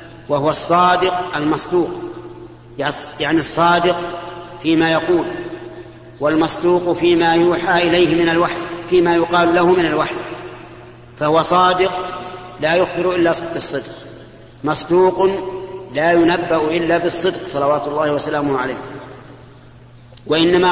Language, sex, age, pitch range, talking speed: Arabic, male, 50-69, 150-175 Hz, 100 wpm